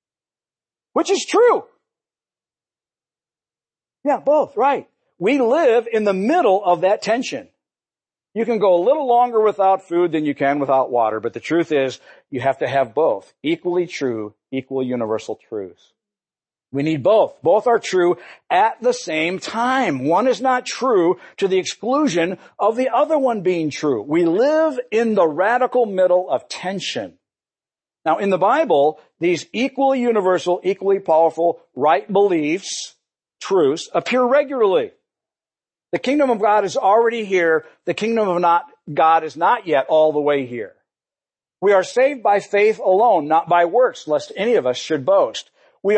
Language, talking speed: English, 160 wpm